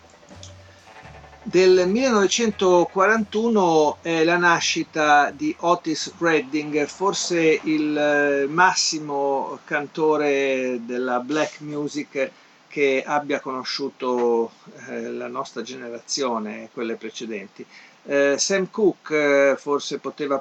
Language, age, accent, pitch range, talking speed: Italian, 50-69, native, 125-160 Hz, 80 wpm